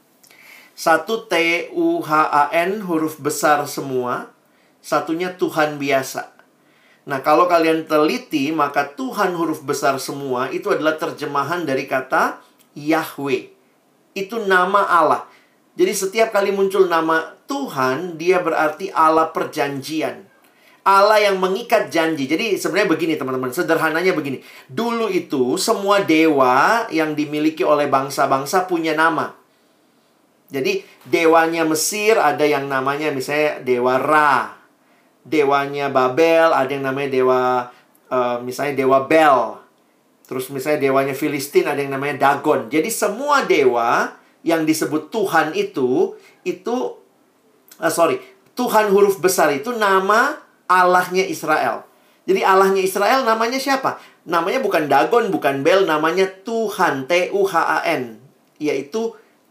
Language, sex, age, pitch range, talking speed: Indonesian, male, 40-59, 145-205 Hz, 120 wpm